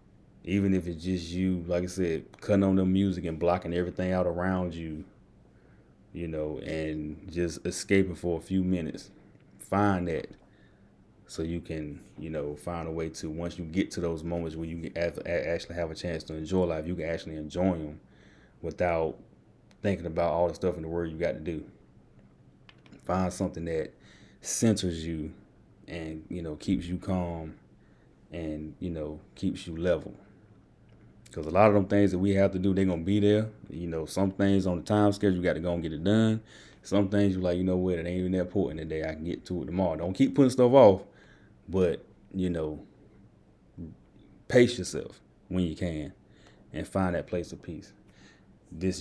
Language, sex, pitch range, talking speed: English, male, 80-95 Hz, 195 wpm